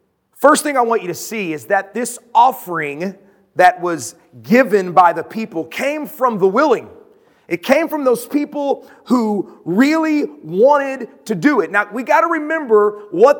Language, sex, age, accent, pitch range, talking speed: English, male, 30-49, American, 195-285 Hz, 170 wpm